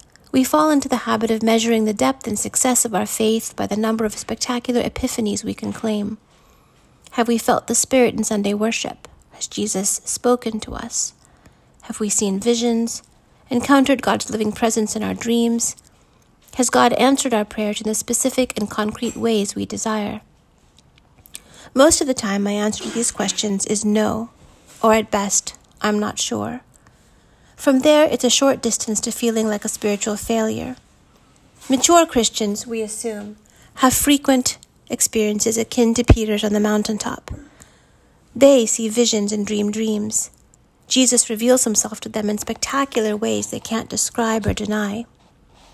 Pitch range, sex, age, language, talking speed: 215-245 Hz, female, 40-59, English, 160 wpm